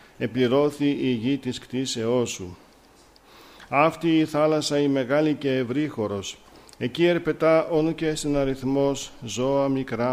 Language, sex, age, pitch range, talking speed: Greek, male, 50-69, 120-150 Hz, 125 wpm